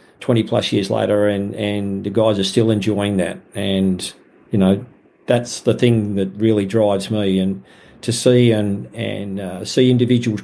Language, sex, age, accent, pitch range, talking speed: English, male, 50-69, Australian, 100-115 Hz, 170 wpm